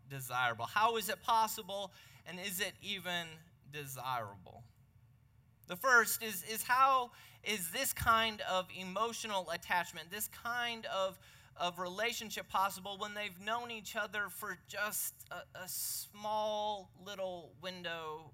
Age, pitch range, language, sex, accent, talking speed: 20-39, 130-185 Hz, English, male, American, 130 wpm